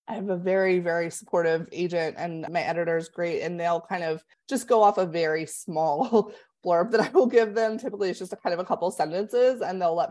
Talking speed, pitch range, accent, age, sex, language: 240 wpm, 165-215 Hz, American, 20-39, female, English